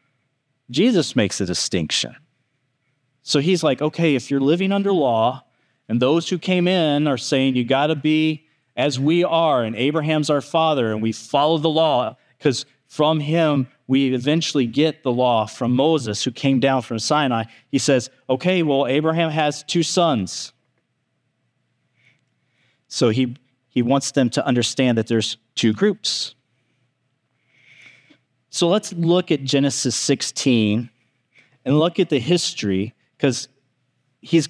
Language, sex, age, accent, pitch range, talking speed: English, male, 30-49, American, 125-150 Hz, 145 wpm